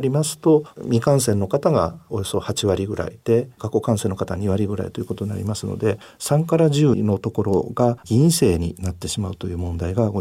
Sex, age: male, 50-69